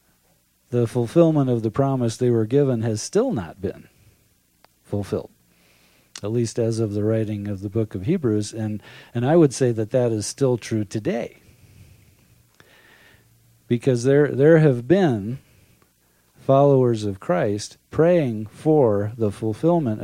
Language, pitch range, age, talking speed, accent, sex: English, 100-130 Hz, 50-69, 140 wpm, American, male